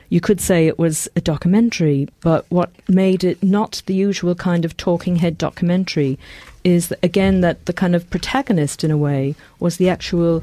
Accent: British